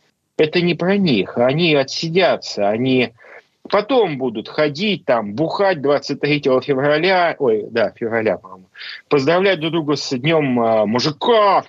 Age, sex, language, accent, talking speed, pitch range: 30-49, male, Russian, native, 125 wpm, 110-150 Hz